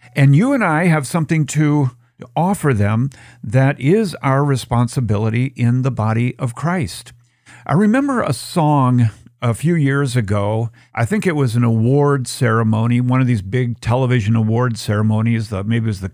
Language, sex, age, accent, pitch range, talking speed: English, male, 50-69, American, 115-140 Hz, 165 wpm